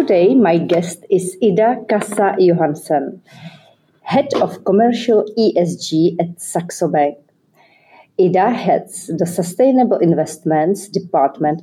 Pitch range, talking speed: 155-200 Hz, 100 wpm